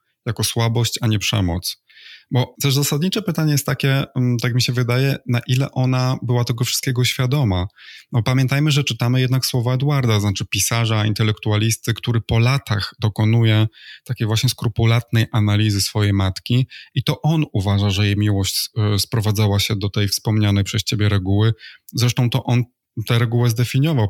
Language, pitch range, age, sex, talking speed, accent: Polish, 110-125 Hz, 20-39, male, 155 wpm, native